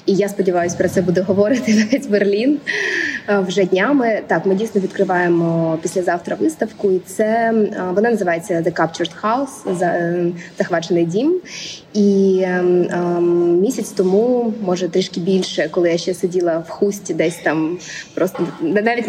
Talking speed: 140 wpm